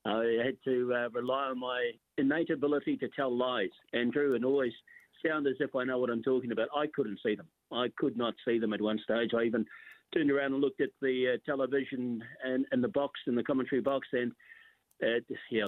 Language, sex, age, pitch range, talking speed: English, male, 50-69, 115-140 Hz, 220 wpm